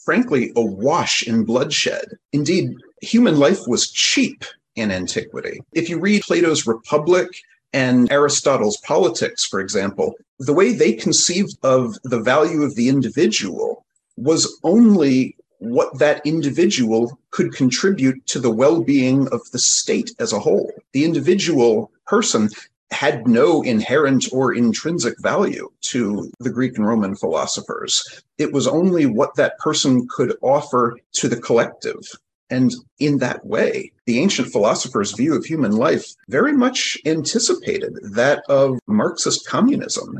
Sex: male